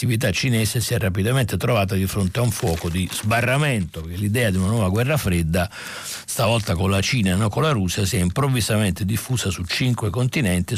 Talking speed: 200 wpm